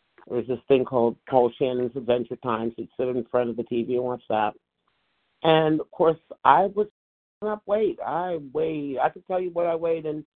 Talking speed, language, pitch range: 215 wpm, English, 120-165 Hz